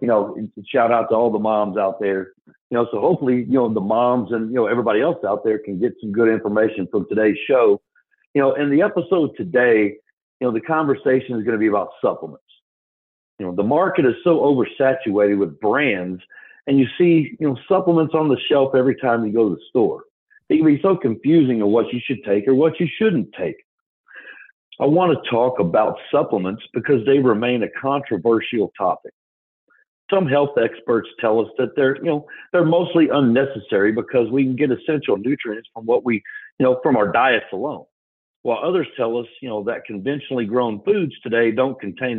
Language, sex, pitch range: English, male, 115-170 Hz